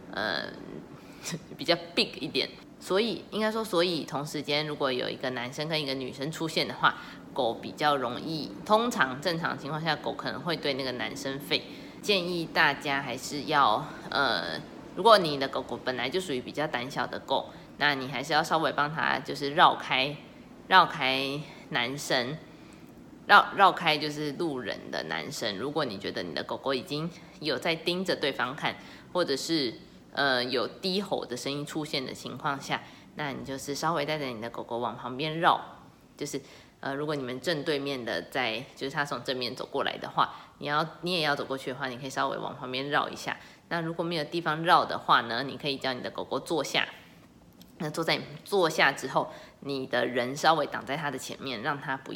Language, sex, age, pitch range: Chinese, female, 20-39, 130-160 Hz